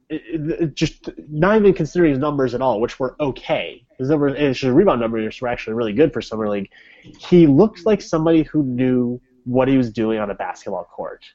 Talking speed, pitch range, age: 215 wpm, 125-165 Hz, 20-39